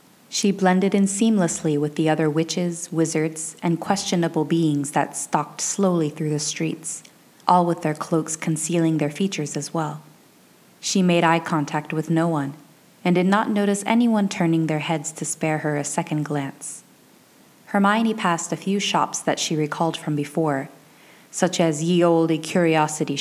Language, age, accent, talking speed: English, 20-39, American, 165 wpm